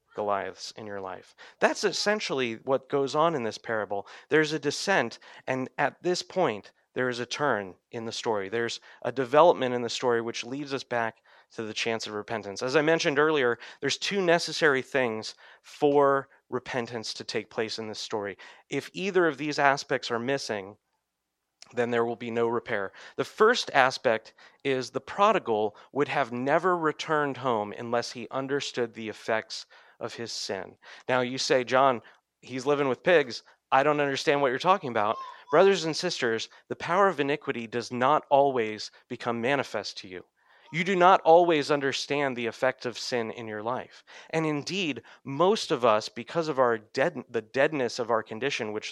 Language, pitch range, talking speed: English, 115-150 Hz, 180 wpm